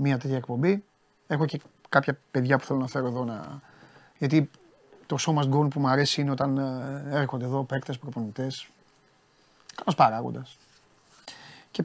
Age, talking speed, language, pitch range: 30-49, 145 wpm, Greek, 120-145 Hz